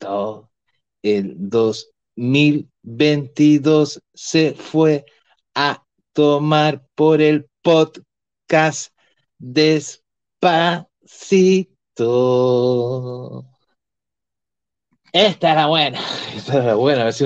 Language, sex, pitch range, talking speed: English, male, 115-155 Hz, 75 wpm